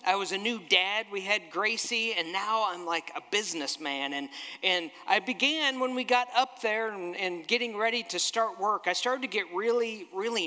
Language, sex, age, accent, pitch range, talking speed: English, male, 50-69, American, 195-255 Hz, 205 wpm